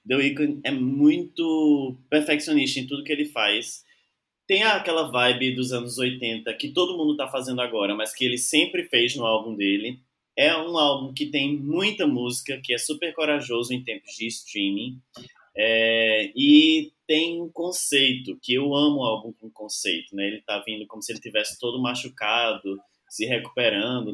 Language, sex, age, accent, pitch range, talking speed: Portuguese, male, 20-39, Brazilian, 115-155 Hz, 170 wpm